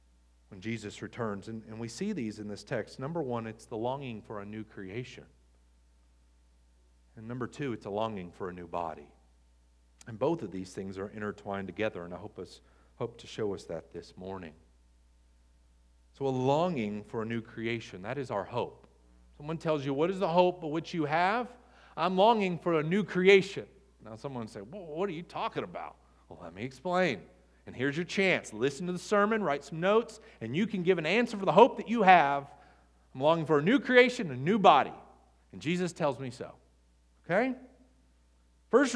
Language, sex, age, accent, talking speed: English, male, 40-59, American, 195 wpm